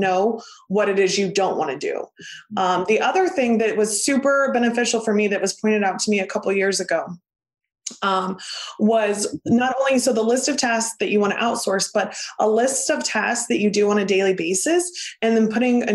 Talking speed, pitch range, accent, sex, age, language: 220 wpm, 195-240 Hz, American, female, 20-39, English